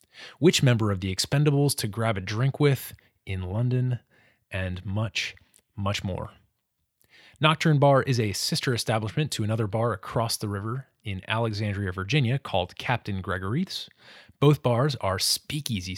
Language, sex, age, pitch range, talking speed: English, male, 20-39, 105-140 Hz, 145 wpm